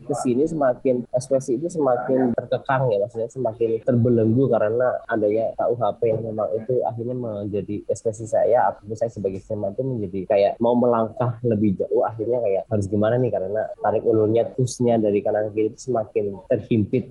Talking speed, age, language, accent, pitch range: 160 wpm, 20-39, Indonesian, native, 105-135 Hz